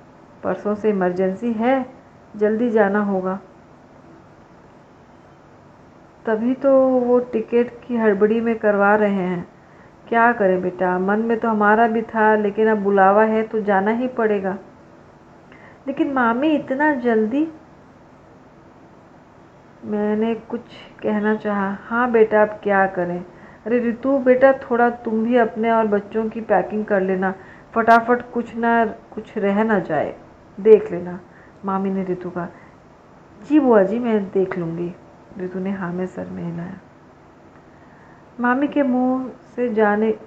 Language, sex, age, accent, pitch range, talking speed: Hindi, female, 40-59, native, 195-230 Hz, 135 wpm